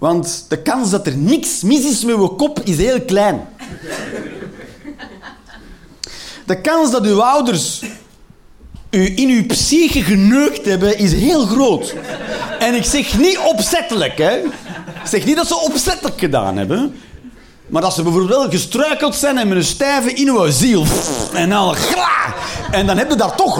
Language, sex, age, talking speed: Dutch, male, 40-59, 160 wpm